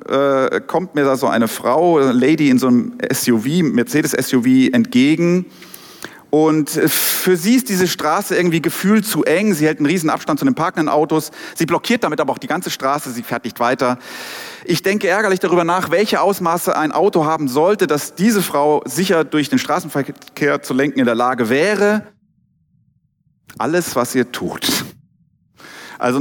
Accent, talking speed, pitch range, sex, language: German, 170 wpm, 130-185 Hz, male, German